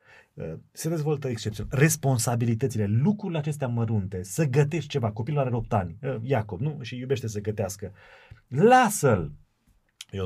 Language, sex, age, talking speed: Romanian, male, 30-49, 130 wpm